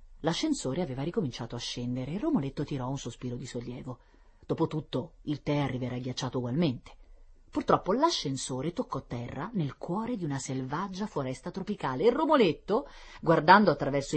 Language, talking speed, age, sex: Italian, 140 wpm, 30-49, female